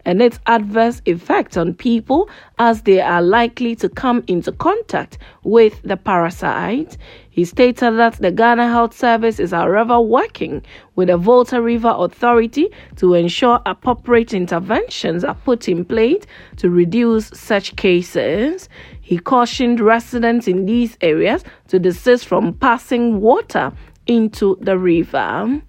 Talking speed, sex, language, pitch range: 135 wpm, female, English, 190-245 Hz